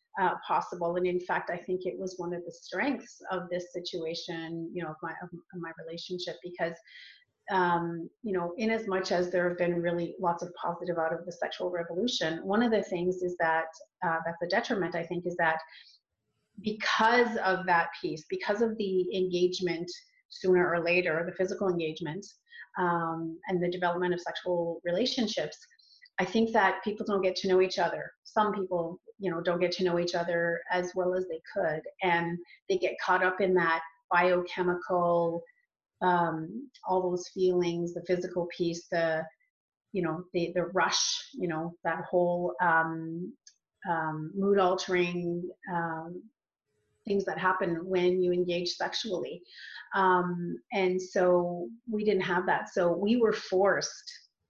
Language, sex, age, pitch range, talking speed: English, female, 30-49, 170-190 Hz, 165 wpm